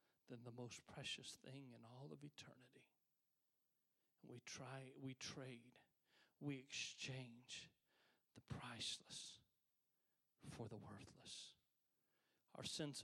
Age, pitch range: 40-59, 135-225 Hz